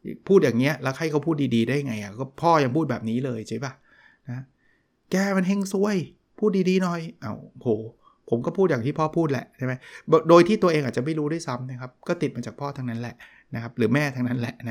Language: Thai